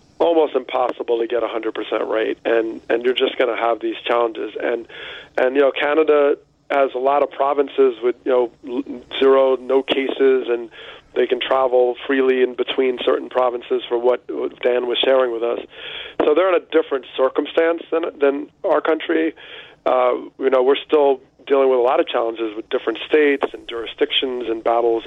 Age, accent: 40-59, American